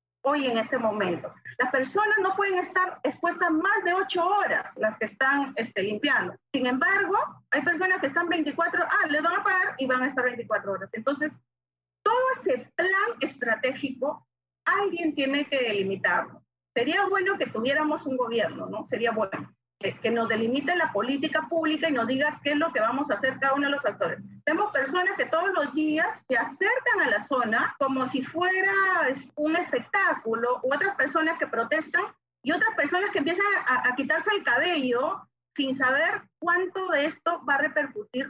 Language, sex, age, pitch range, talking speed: Spanish, female, 40-59, 245-345 Hz, 180 wpm